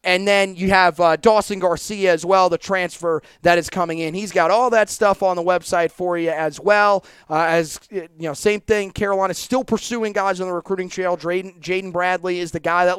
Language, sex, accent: English, male, American